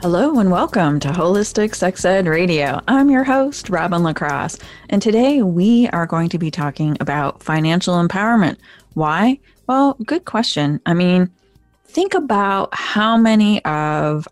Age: 20-39